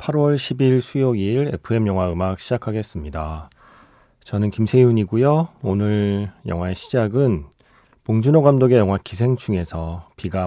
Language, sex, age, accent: Korean, male, 30-49, native